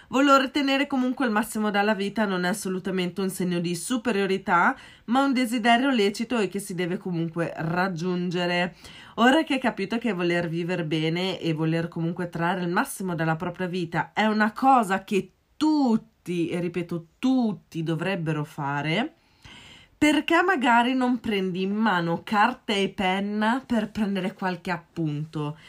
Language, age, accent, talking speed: Italian, 20-39, native, 150 wpm